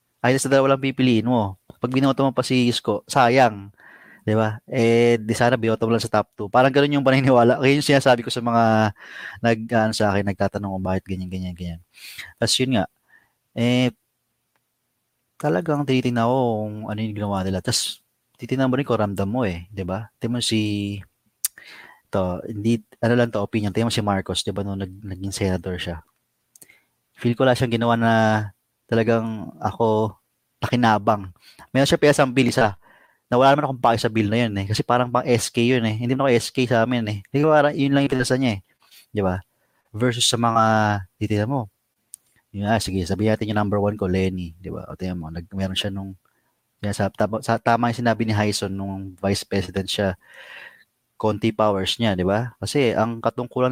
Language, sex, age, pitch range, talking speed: Filipino, male, 20-39, 100-125 Hz, 190 wpm